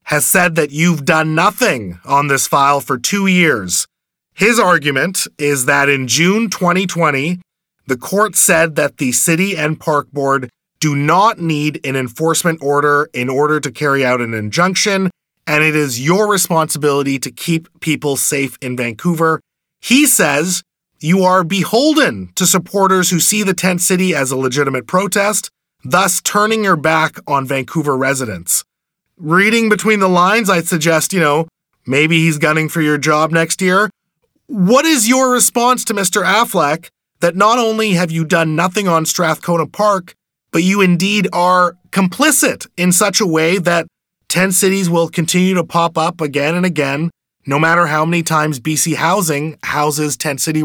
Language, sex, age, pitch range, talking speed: English, male, 30-49, 150-190 Hz, 165 wpm